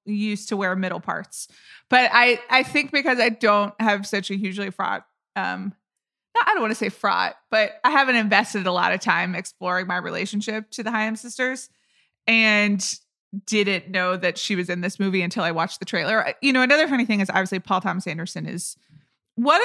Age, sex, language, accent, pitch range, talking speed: 20-39, female, English, American, 185-220 Hz, 200 wpm